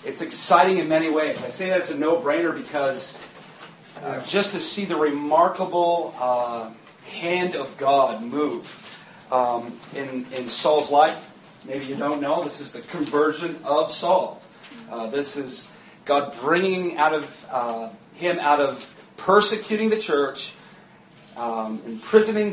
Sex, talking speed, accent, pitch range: male, 145 wpm, American, 140-195 Hz